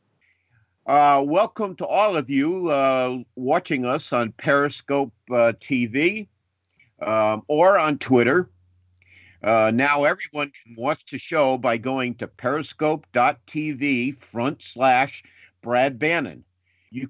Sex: male